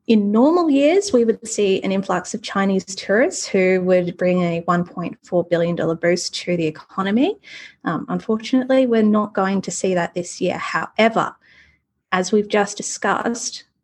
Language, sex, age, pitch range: English, female, 20-39, 180-240 Hz